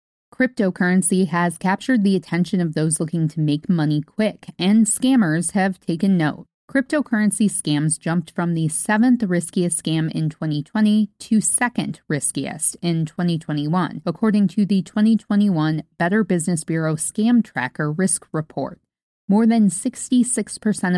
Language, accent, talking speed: English, American, 130 wpm